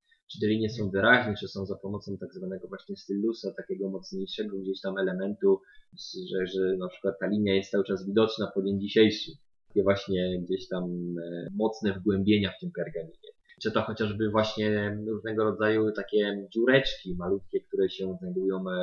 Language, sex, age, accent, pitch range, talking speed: Polish, male, 20-39, native, 95-115 Hz, 165 wpm